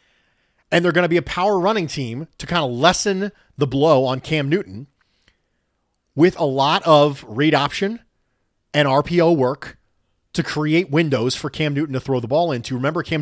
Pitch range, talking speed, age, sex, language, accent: 135-205 Hz, 180 wpm, 30-49, male, English, American